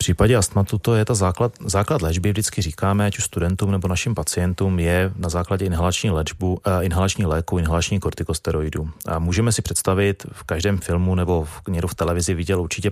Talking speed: 180 wpm